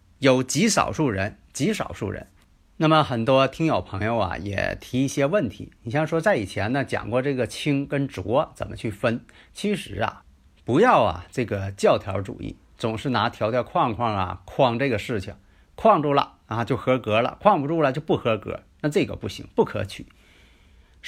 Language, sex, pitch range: Chinese, male, 100-135 Hz